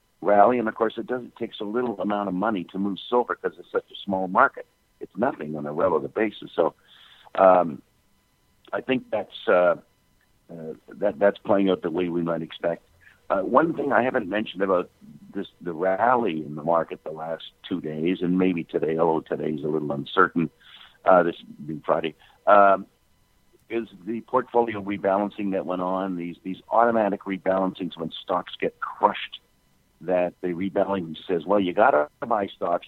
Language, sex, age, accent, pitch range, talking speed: English, male, 60-79, American, 85-105 Hz, 180 wpm